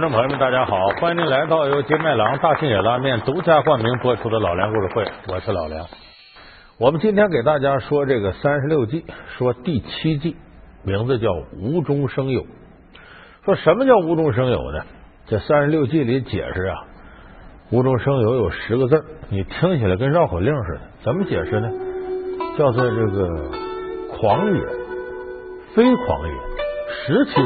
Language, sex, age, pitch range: Chinese, male, 50-69, 125-190 Hz